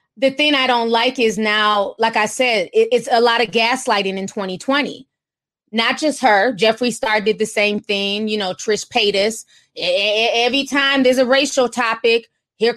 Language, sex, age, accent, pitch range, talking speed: English, female, 20-39, American, 220-275 Hz, 175 wpm